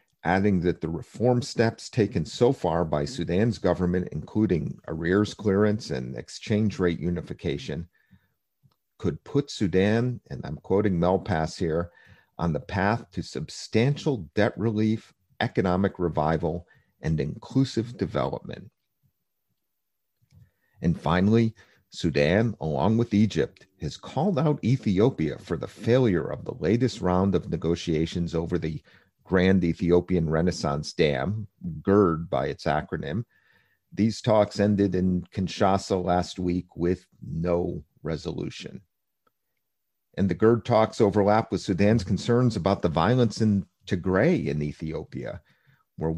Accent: American